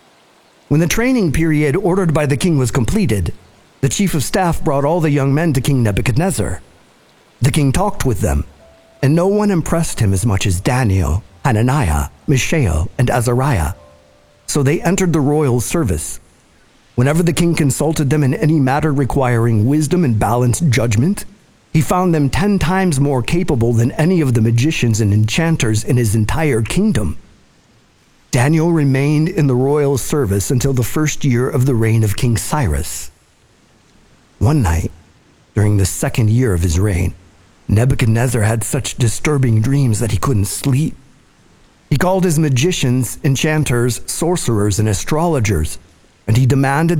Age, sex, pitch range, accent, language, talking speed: 50-69, male, 105-150 Hz, American, English, 155 wpm